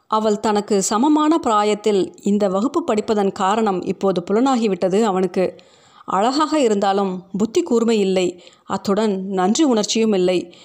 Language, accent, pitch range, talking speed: Tamil, native, 195-240 Hz, 115 wpm